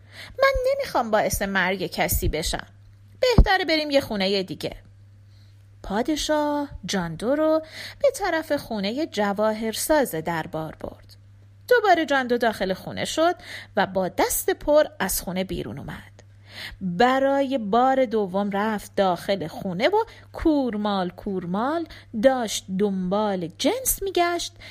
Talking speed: 110 wpm